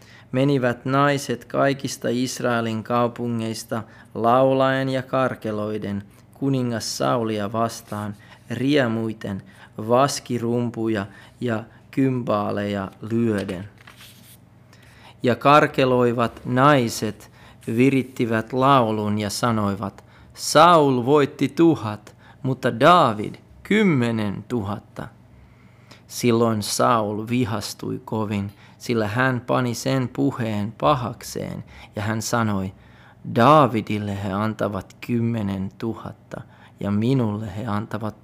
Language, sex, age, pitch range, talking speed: Finnish, male, 30-49, 110-130 Hz, 80 wpm